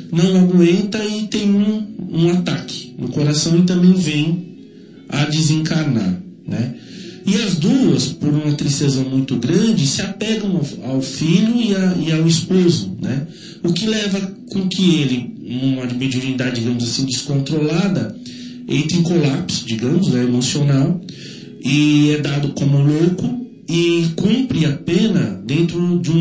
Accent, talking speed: Brazilian, 140 wpm